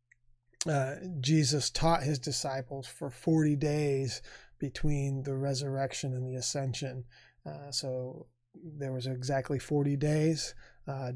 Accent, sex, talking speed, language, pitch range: American, male, 120 wpm, English, 130-155 Hz